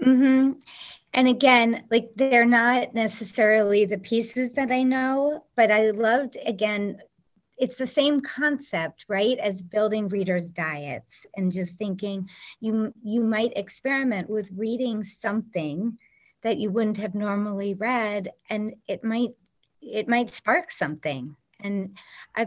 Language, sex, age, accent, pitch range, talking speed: English, female, 30-49, American, 180-230 Hz, 135 wpm